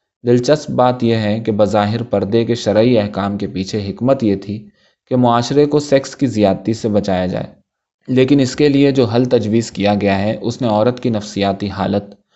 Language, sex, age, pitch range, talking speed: Urdu, male, 20-39, 100-125 Hz, 195 wpm